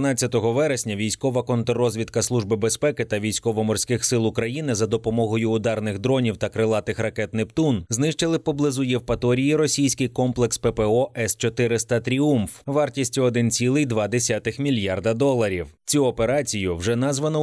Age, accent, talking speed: 20-39, native, 115 wpm